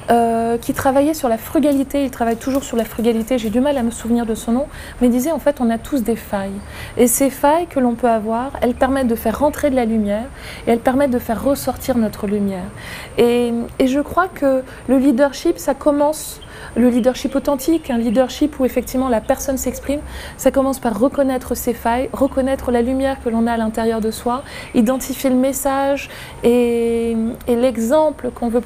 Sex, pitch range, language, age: female, 230-270 Hz, French, 20-39